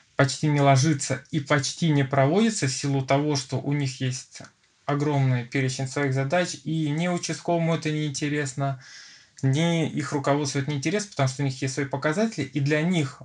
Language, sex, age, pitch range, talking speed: Russian, male, 20-39, 135-150 Hz, 180 wpm